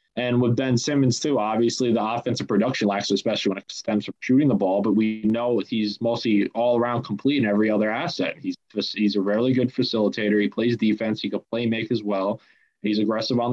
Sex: male